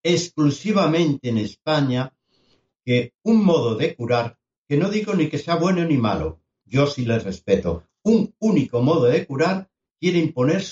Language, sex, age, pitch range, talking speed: Spanish, male, 60-79, 120-160 Hz, 155 wpm